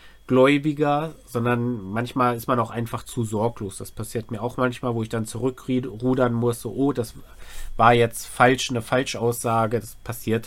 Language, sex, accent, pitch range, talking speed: German, male, German, 115-130 Hz, 160 wpm